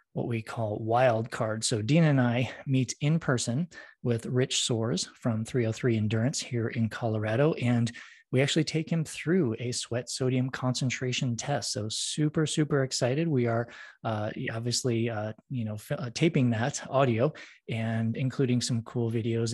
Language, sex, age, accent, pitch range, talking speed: English, male, 20-39, American, 115-140 Hz, 165 wpm